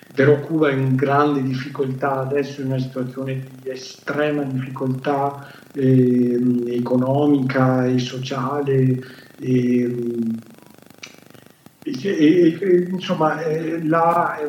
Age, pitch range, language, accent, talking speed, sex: 50-69, 130-150 Hz, Italian, native, 110 wpm, male